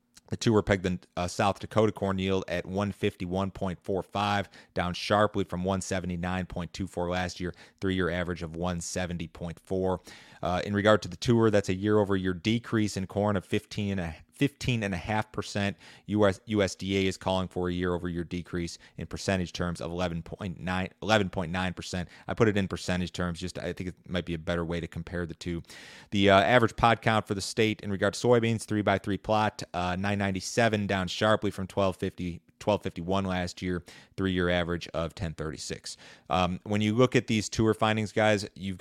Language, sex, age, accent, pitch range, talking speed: English, male, 30-49, American, 85-100 Hz, 165 wpm